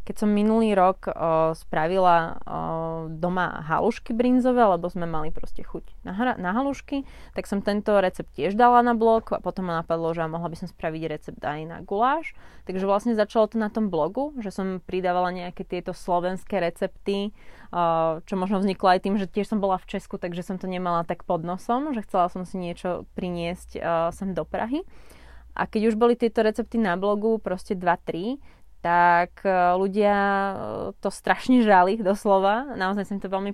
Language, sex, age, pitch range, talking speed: Slovak, female, 20-39, 170-200 Hz, 185 wpm